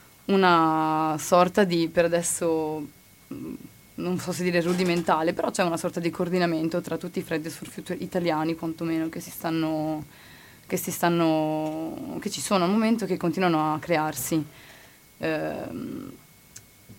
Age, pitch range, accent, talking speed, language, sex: 20-39, 165-185 Hz, native, 140 wpm, Italian, female